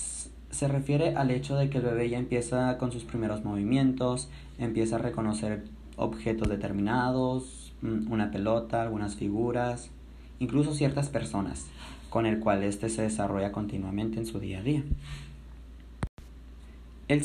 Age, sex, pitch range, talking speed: 20-39, male, 100-125 Hz, 135 wpm